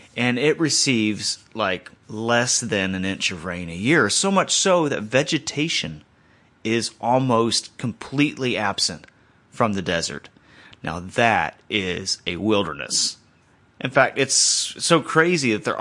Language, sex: English, male